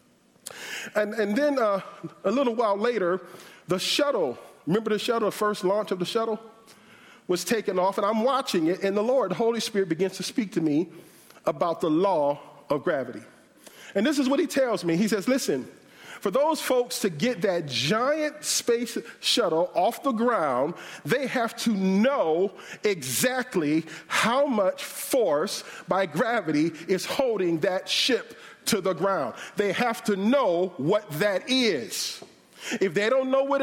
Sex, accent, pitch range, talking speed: male, American, 205-260 Hz, 165 wpm